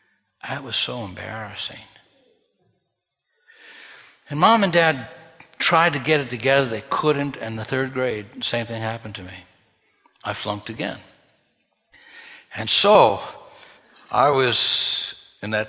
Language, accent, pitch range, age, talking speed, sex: English, American, 110-155 Hz, 60-79, 125 wpm, male